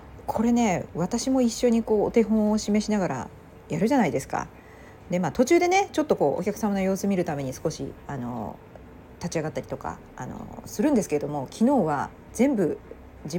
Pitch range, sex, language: 150-220 Hz, female, Japanese